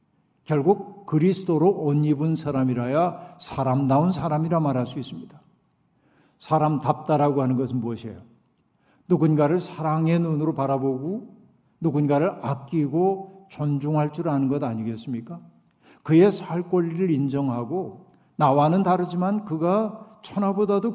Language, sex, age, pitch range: Korean, male, 60-79, 135-185 Hz